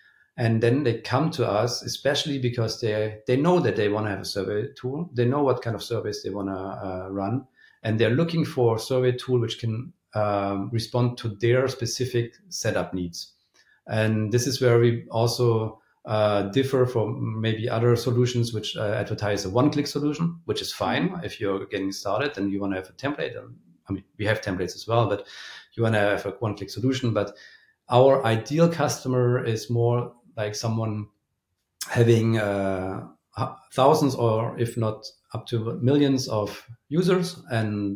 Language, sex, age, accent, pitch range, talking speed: English, male, 40-59, German, 105-120 Hz, 180 wpm